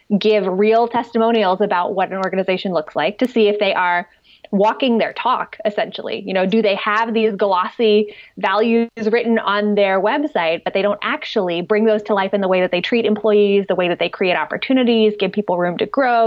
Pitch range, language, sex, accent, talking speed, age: 200-240 Hz, English, female, American, 205 wpm, 20-39